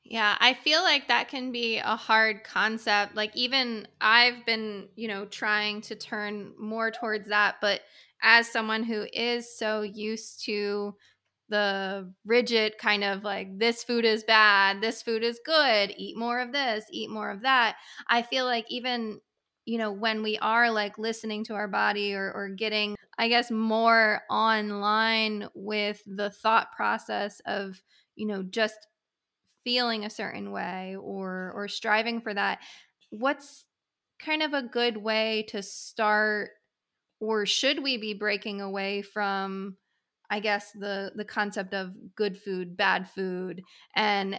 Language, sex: English, female